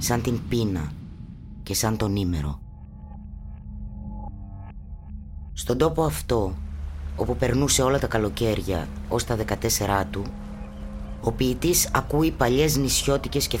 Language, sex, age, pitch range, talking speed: Greek, female, 20-39, 90-130 Hz, 110 wpm